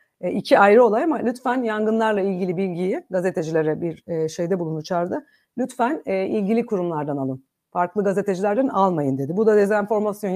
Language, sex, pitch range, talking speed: Turkish, female, 175-220 Hz, 140 wpm